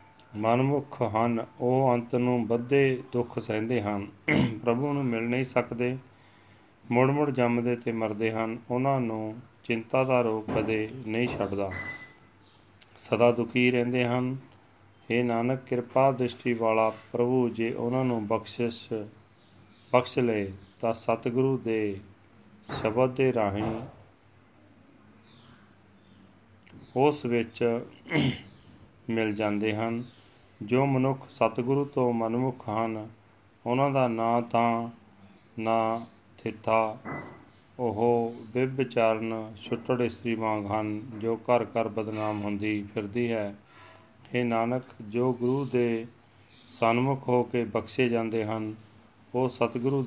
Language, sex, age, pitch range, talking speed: Punjabi, male, 40-59, 110-125 Hz, 110 wpm